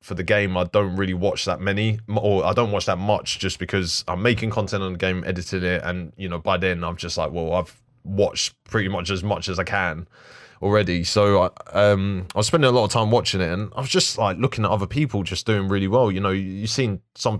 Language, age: English, 20-39